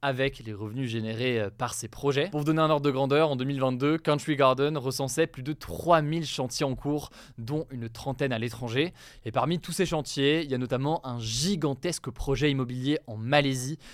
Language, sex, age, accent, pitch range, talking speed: French, male, 20-39, French, 120-150 Hz, 195 wpm